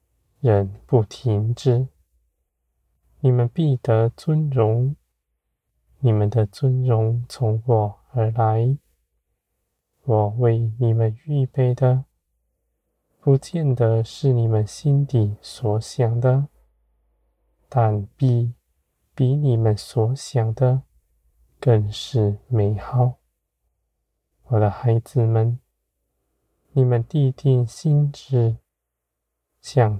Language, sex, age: Chinese, male, 20-39